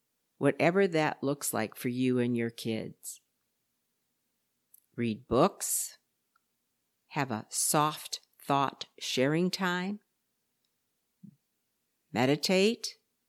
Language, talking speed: English, 80 wpm